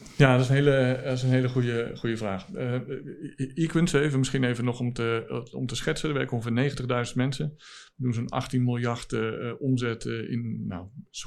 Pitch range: 110-130 Hz